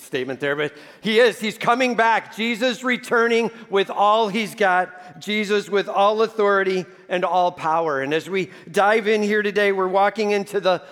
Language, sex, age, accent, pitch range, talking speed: English, male, 50-69, American, 180-215 Hz, 175 wpm